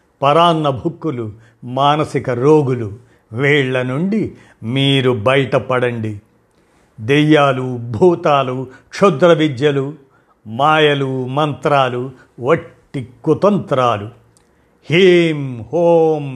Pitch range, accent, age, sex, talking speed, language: 120-150 Hz, native, 50-69, male, 65 wpm, Telugu